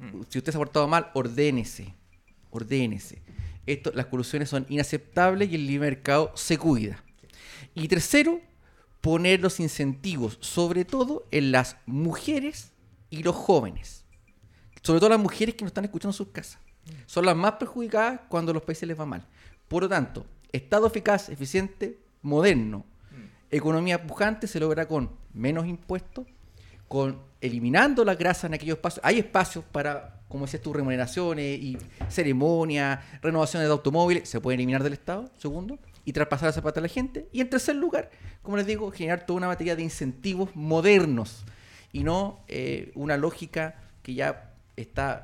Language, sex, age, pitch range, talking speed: Spanish, male, 30-49, 130-180 Hz, 160 wpm